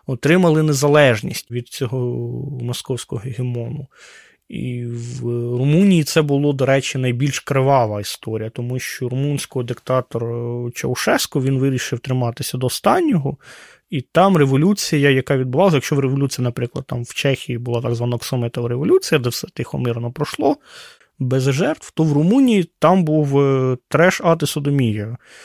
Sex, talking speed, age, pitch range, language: male, 130 wpm, 20-39, 125-150 Hz, Ukrainian